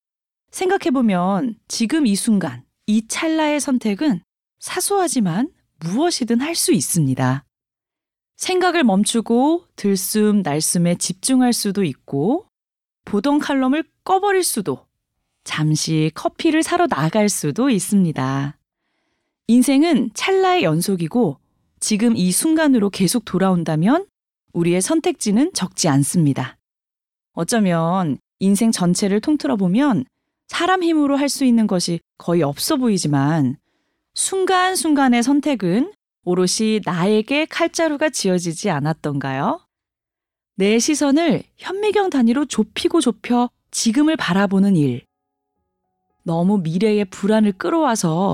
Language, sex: Korean, female